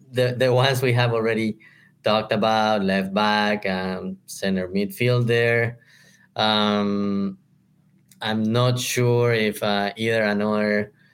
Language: English